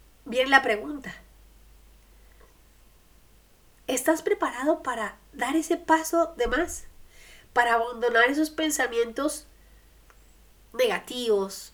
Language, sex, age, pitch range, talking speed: Spanish, female, 30-49, 195-275 Hz, 80 wpm